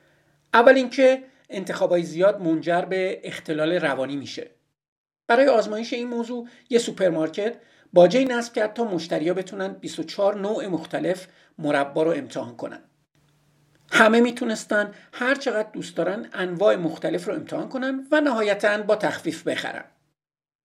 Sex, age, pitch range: male, 50-69, 155-235 Hz